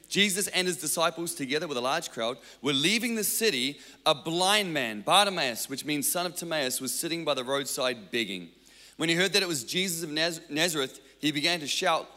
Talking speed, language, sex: 200 wpm, English, male